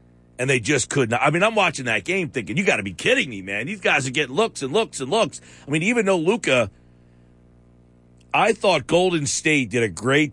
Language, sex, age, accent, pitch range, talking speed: English, male, 40-59, American, 105-150 Hz, 240 wpm